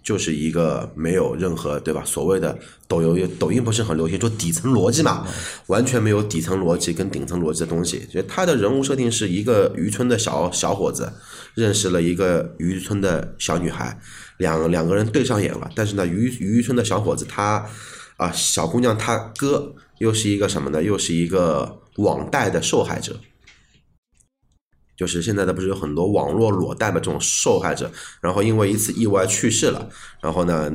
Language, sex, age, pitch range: Chinese, male, 20-39, 85-110 Hz